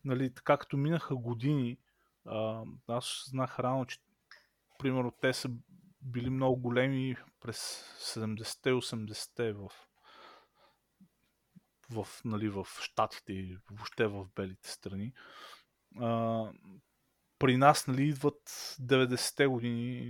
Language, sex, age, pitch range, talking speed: Bulgarian, male, 20-39, 110-135 Hz, 100 wpm